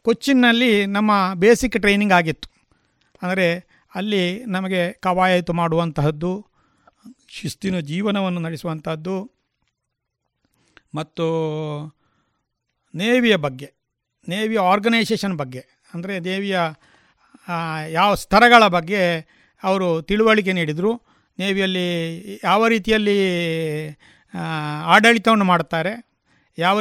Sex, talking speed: male, 75 wpm